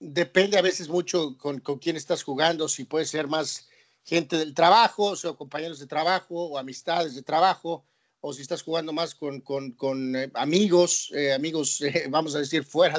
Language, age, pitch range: Spanish, 40-59, 150-180 Hz